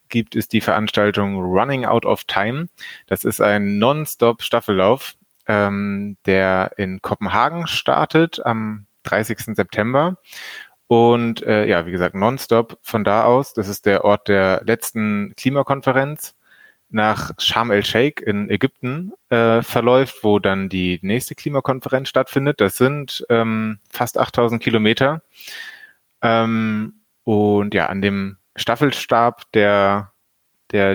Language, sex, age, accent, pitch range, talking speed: German, male, 30-49, German, 100-120 Hz, 120 wpm